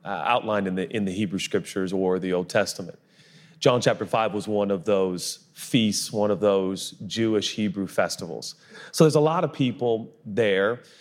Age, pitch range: 40-59, 105-155 Hz